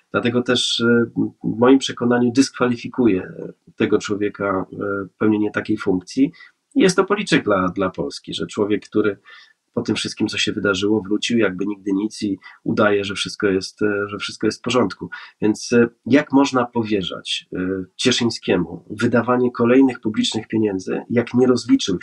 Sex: male